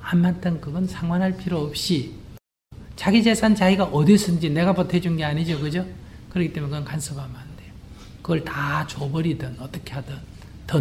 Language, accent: Korean, native